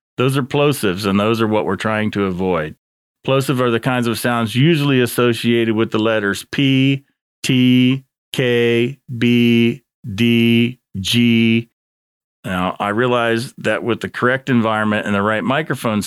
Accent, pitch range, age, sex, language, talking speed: American, 100-125 Hz, 40-59, male, English, 150 wpm